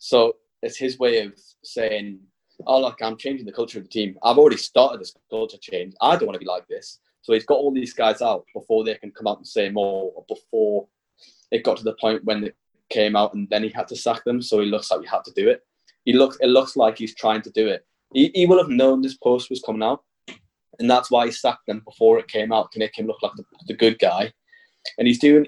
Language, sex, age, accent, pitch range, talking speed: English, male, 20-39, British, 110-145 Hz, 260 wpm